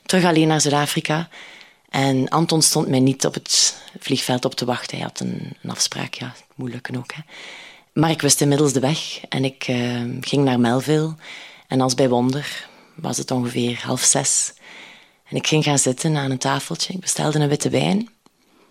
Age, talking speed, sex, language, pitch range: 30-49, 185 wpm, female, Dutch, 130-155 Hz